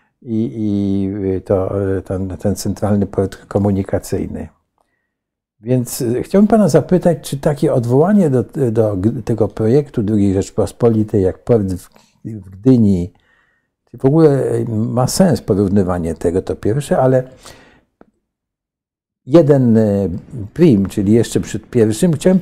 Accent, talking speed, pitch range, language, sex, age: native, 110 wpm, 105-135 Hz, Polish, male, 60-79